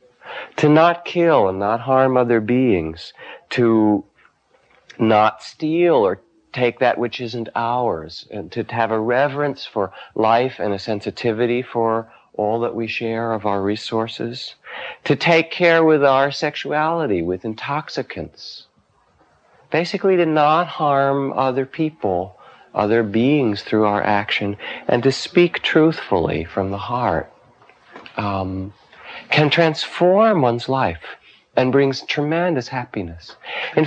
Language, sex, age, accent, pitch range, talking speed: English, male, 50-69, American, 105-165 Hz, 125 wpm